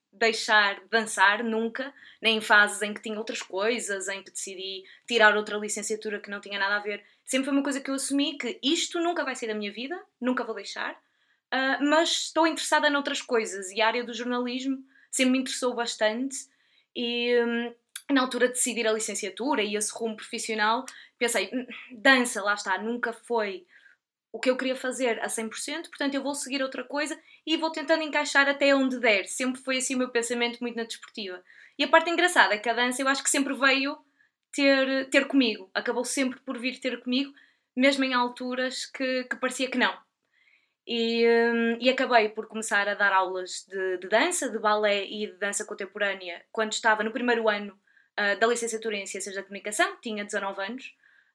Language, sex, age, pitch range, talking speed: Portuguese, female, 20-39, 215-270 Hz, 190 wpm